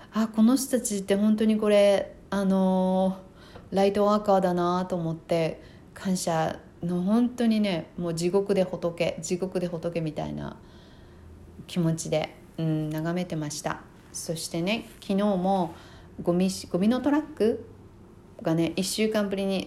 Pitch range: 160-205 Hz